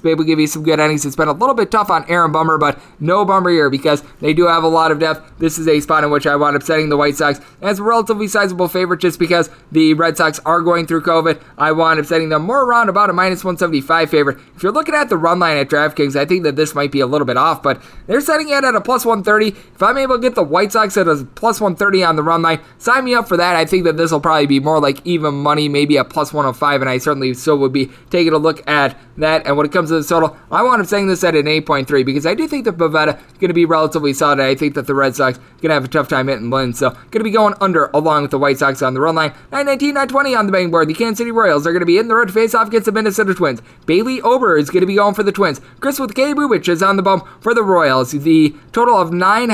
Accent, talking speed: American, 295 wpm